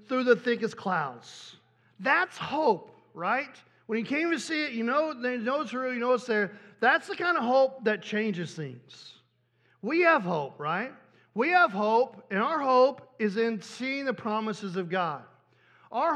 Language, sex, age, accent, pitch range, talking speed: English, male, 40-59, American, 210-270 Hz, 180 wpm